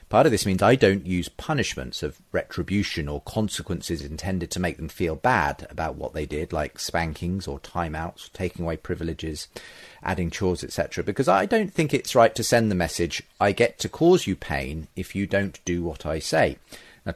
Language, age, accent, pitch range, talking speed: English, 40-59, British, 85-105 Hz, 195 wpm